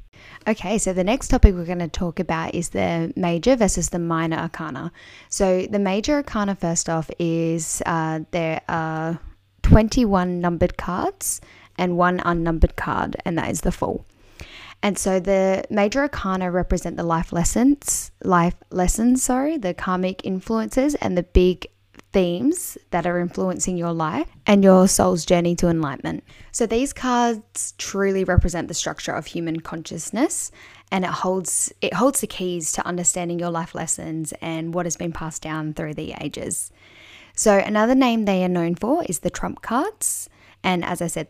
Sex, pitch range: female, 165-205 Hz